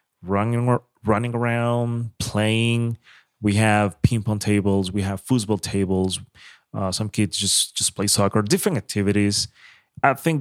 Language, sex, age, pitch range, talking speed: English, male, 30-49, 100-115 Hz, 140 wpm